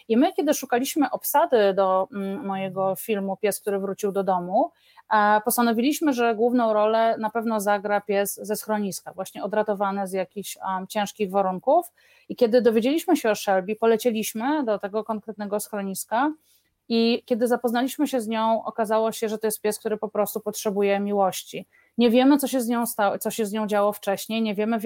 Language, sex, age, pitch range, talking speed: Polish, female, 30-49, 200-230 Hz, 180 wpm